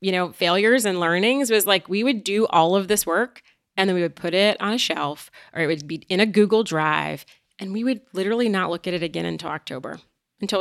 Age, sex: 30-49, female